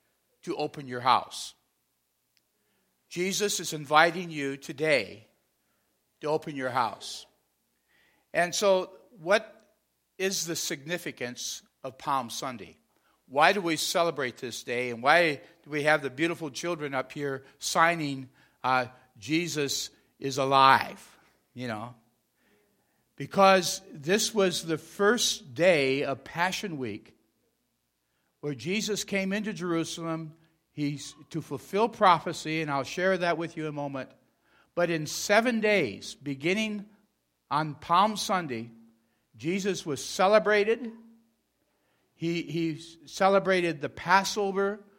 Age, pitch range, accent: 60-79, 135-190 Hz, American